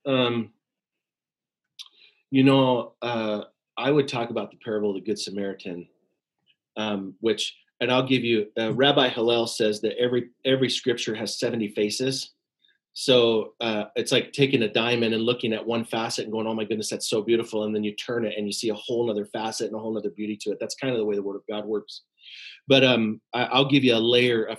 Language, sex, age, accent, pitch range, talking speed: English, male, 30-49, American, 110-135 Hz, 215 wpm